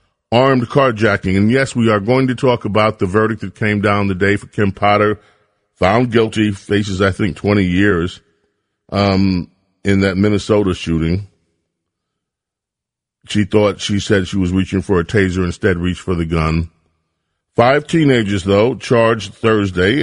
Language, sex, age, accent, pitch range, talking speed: English, male, 40-59, American, 95-115 Hz, 155 wpm